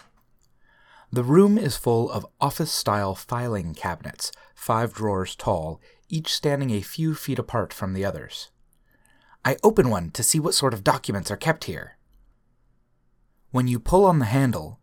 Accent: American